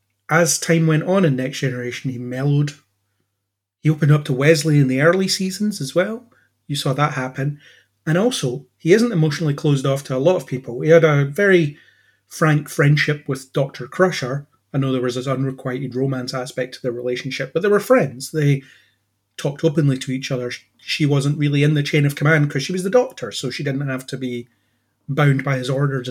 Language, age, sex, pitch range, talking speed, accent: English, 30-49, male, 130-160 Hz, 205 wpm, British